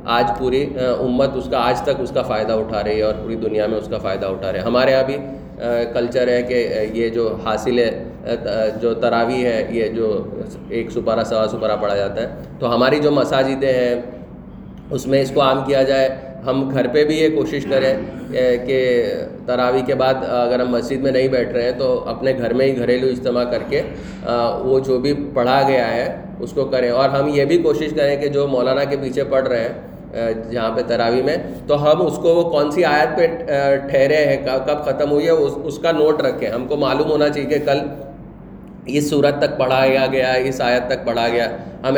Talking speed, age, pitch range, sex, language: 200 wpm, 20-39, 120-145 Hz, male, Urdu